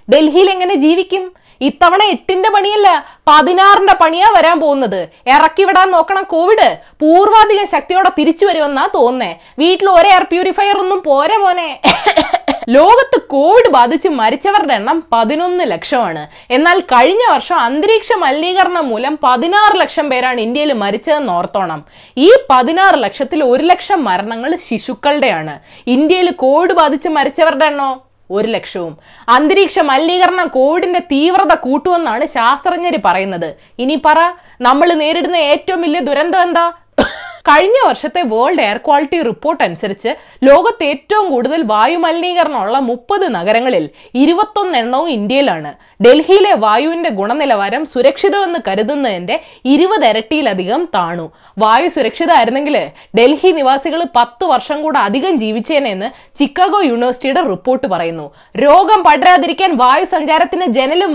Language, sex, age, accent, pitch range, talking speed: Malayalam, female, 20-39, native, 255-360 Hz, 115 wpm